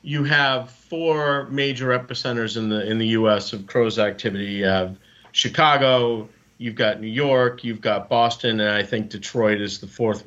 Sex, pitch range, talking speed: male, 105-130 Hz, 175 wpm